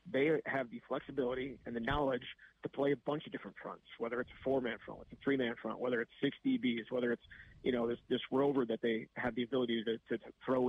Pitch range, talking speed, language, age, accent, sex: 120-135 Hz, 240 wpm, English, 30-49, American, male